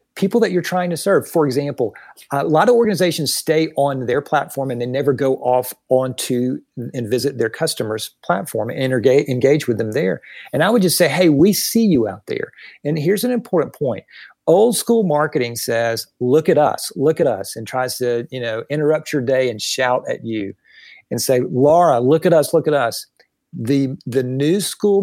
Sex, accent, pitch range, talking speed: male, American, 125-165 Hz, 200 wpm